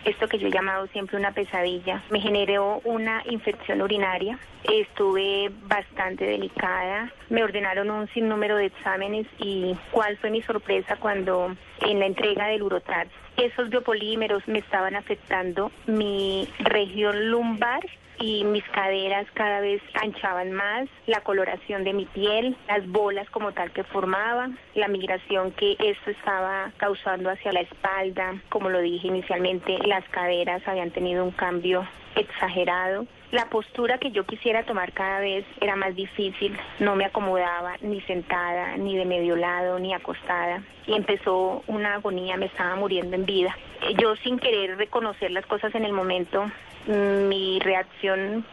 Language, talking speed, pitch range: Spanish, 150 wpm, 185-215 Hz